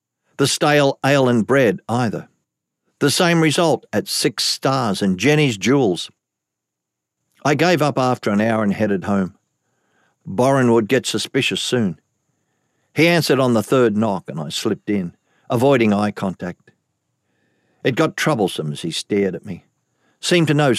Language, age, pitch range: English, 50-69, 100-140 Hz